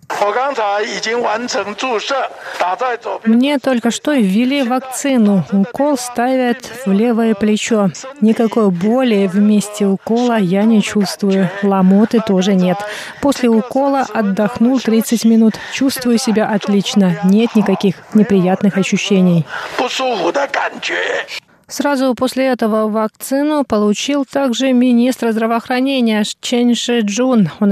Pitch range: 200-235 Hz